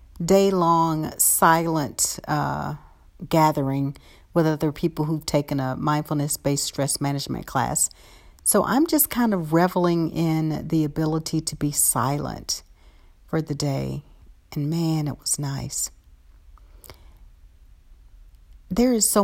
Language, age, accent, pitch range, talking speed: English, 50-69, American, 130-170 Hz, 115 wpm